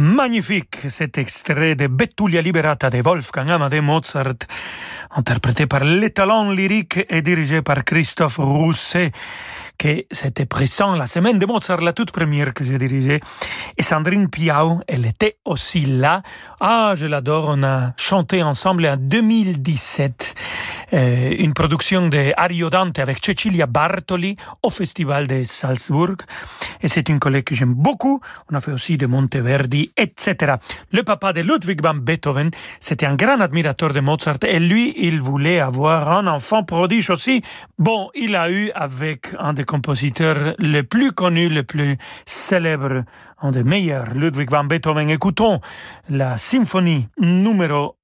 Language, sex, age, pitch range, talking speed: French, male, 40-59, 140-185 Hz, 150 wpm